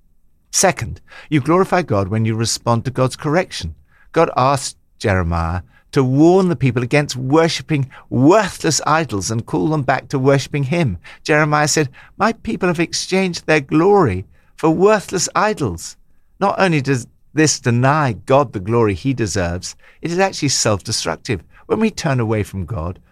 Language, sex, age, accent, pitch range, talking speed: English, male, 60-79, British, 105-150 Hz, 155 wpm